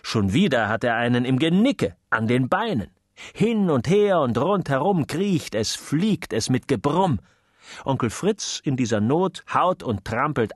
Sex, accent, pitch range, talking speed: male, German, 100-150 Hz, 165 wpm